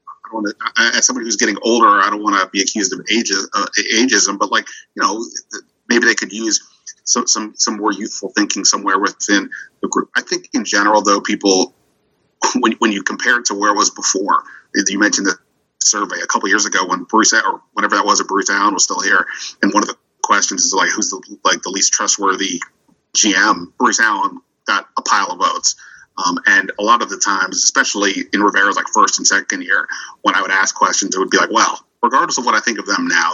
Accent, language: American, English